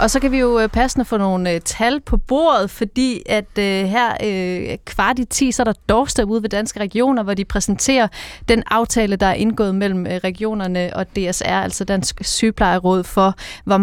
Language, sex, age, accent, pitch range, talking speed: Danish, female, 30-49, native, 190-230 Hz, 180 wpm